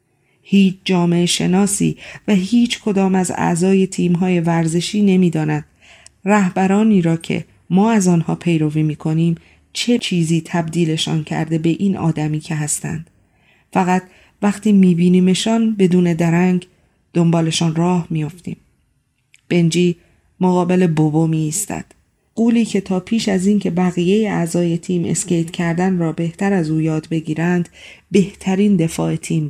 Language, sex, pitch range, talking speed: Persian, female, 165-190 Hz, 125 wpm